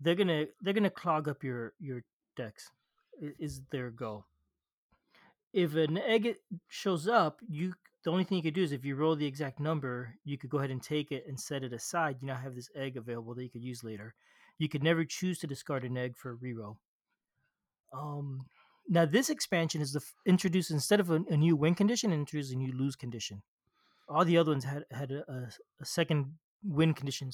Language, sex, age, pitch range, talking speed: English, male, 30-49, 135-175 Hz, 205 wpm